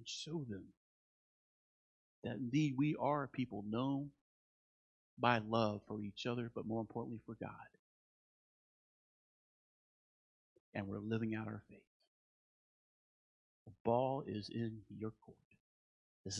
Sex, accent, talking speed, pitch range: male, American, 120 wpm, 105-135 Hz